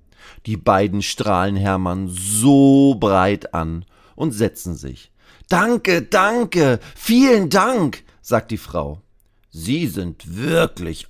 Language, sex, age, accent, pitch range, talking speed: German, male, 40-59, German, 90-130 Hz, 110 wpm